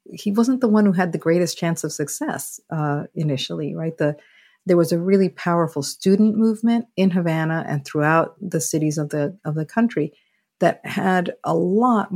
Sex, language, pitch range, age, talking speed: female, English, 145-185 Hz, 50-69, 185 wpm